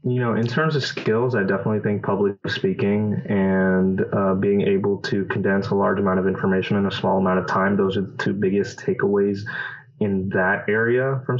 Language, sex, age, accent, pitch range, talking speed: English, male, 20-39, American, 100-120 Hz, 200 wpm